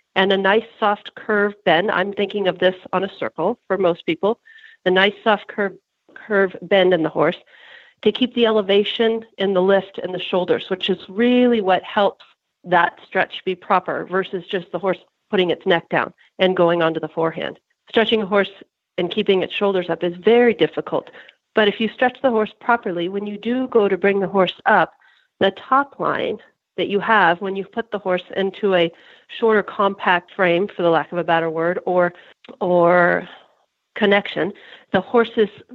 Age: 40-59